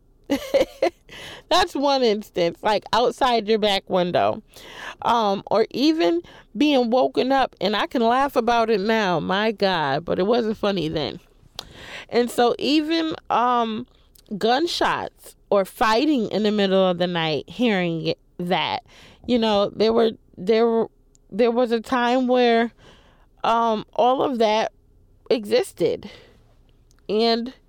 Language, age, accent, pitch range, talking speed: English, 20-39, American, 195-245 Hz, 130 wpm